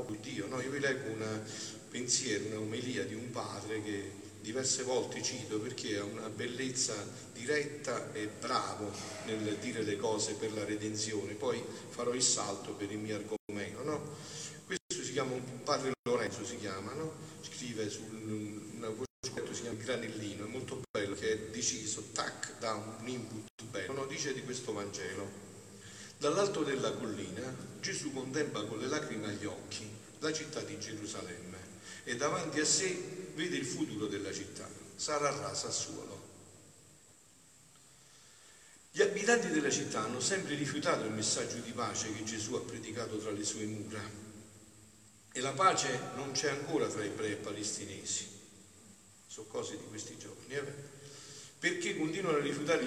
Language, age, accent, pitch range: Italian, 40-59, native, 105-140 Hz